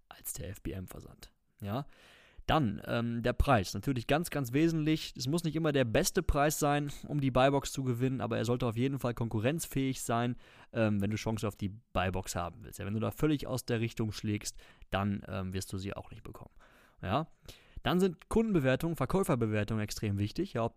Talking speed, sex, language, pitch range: 185 wpm, male, German, 110-135 Hz